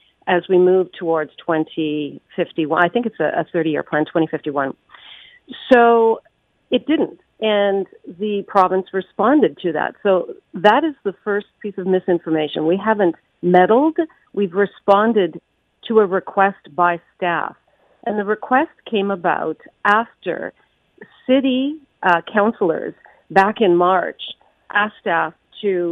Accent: American